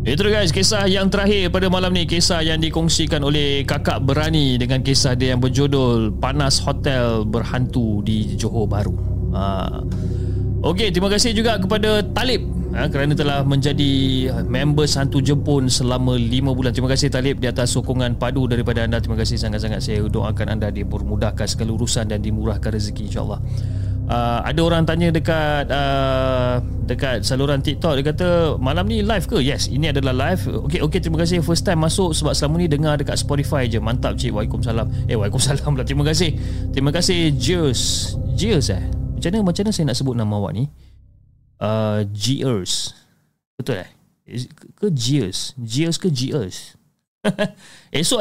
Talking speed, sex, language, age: 165 wpm, male, Malay, 30-49